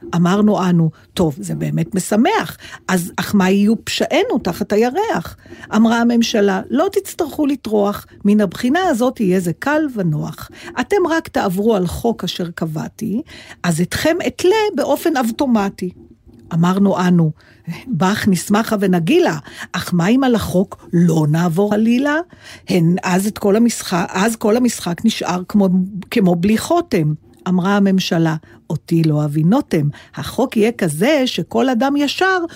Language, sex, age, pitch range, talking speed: Hebrew, female, 50-69, 175-235 Hz, 135 wpm